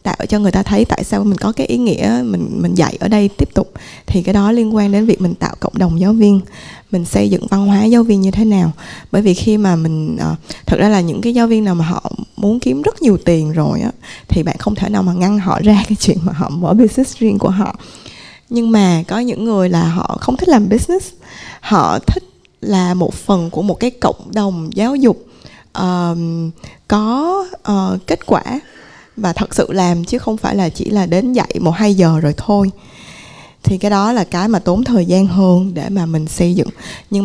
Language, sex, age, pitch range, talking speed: Vietnamese, female, 20-39, 175-220 Hz, 225 wpm